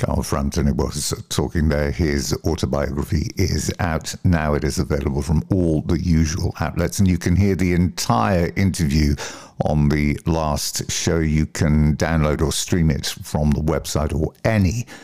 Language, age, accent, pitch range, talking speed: English, 50-69, British, 80-100 Hz, 165 wpm